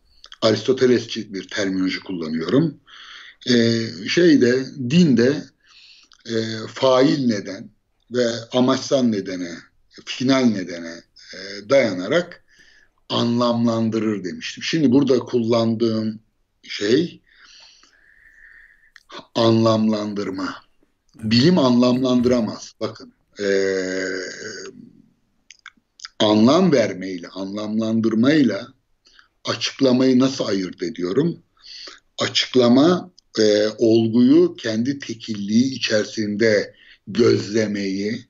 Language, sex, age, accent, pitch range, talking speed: Turkish, male, 60-79, native, 105-130 Hz, 65 wpm